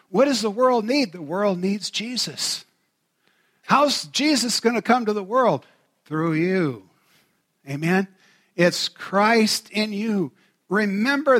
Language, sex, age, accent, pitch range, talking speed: English, male, 50-69, American, 185-250 Hz, 130 wpm